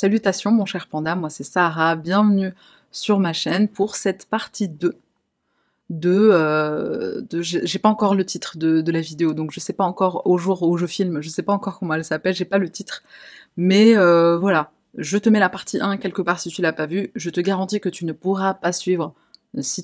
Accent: French